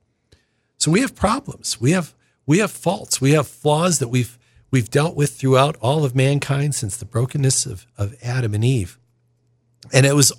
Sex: male